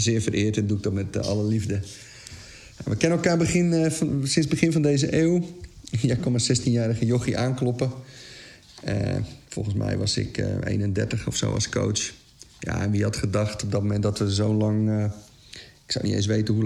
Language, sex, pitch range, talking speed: Dutch, male, 105-125 Hz, 200 wpm